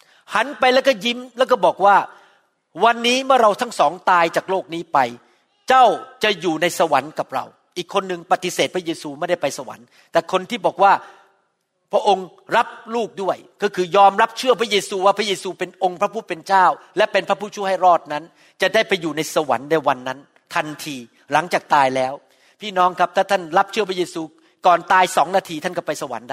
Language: Thai